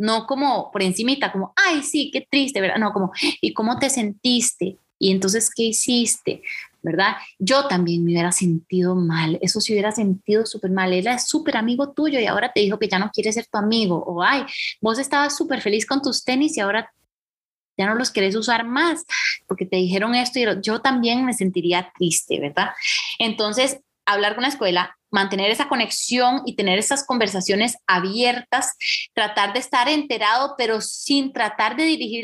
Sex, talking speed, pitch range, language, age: female, 185 wpm, 200-275 Hz, Spanish, 20-39